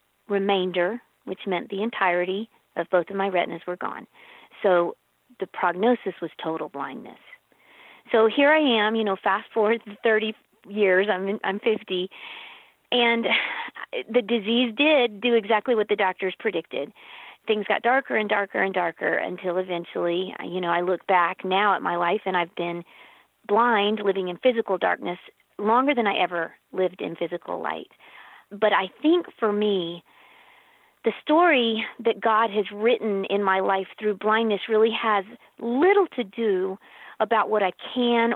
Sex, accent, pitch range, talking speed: female, American, 190-240 Hz, 155 wpm